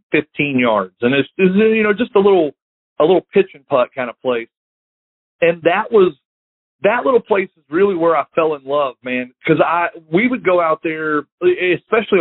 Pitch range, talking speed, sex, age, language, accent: 130-180 Hz, 195 wpm, male, 40-59, English, American